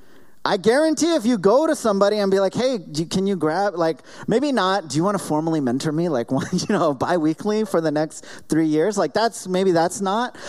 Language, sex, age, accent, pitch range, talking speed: English, male, 30-49, American, 125-195 Hz, 230 wpm